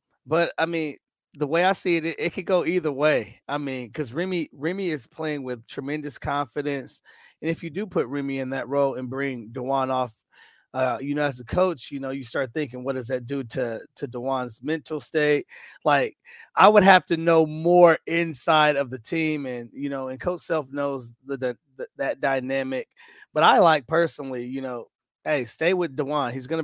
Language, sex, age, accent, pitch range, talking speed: English, male, 30-49, American, 135-155 Hz, 205 wpm